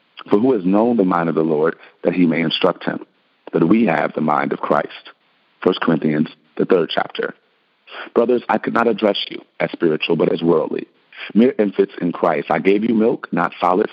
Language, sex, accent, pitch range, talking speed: English, male, American, 90-115 Hz, 205 wpm